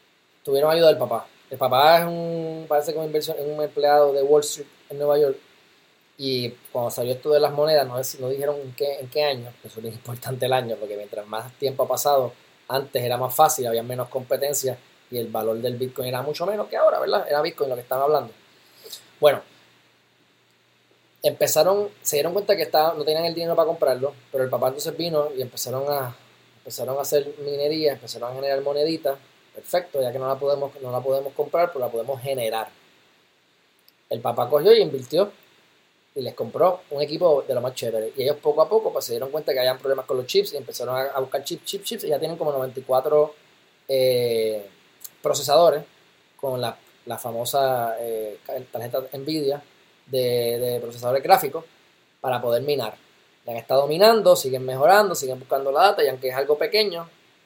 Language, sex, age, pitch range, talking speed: Spanish, male, 20-39, 125-155 Hz, 195 wpm